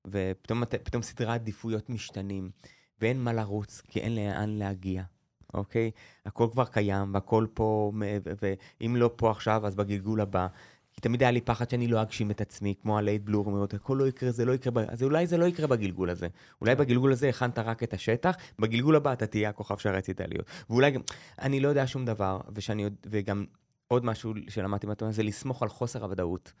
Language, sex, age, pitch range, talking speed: Hebrew, male, 20-39, 100-125 Hz, 130 wpm